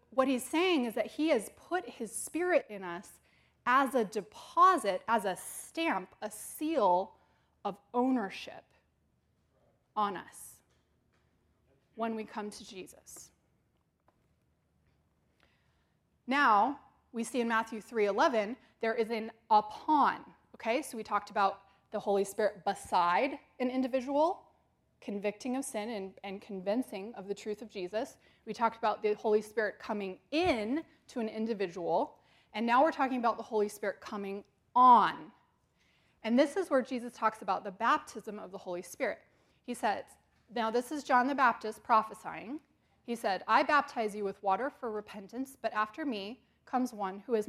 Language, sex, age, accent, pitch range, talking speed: English, female, 20-39, American, 205-260 Hz, 150 wpm